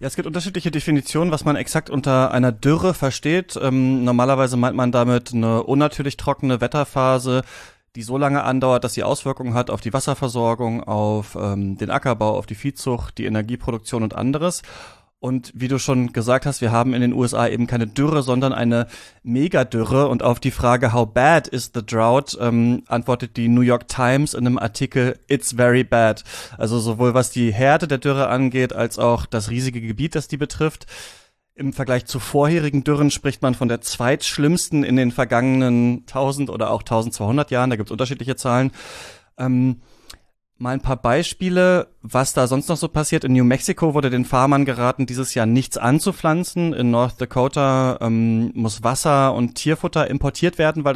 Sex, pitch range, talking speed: male, 120-140 Hz, 180 wpm